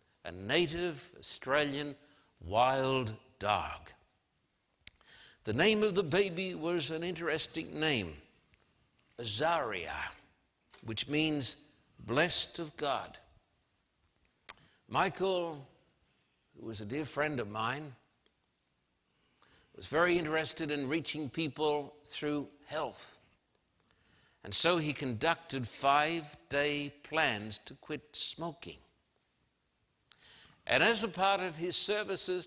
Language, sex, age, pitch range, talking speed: English, male, 60-79, 140-175 Hz, 95 wpm